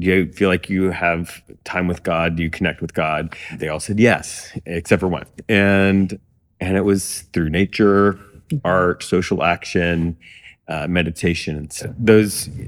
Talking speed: 160 wpm